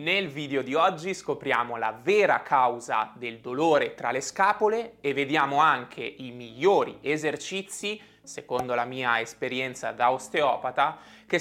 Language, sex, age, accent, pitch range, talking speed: Italian, male, 20-39, native, 130-185 Hz, 135 wpm